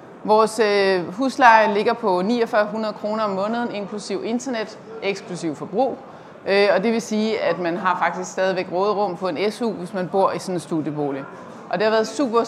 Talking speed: 180 wpm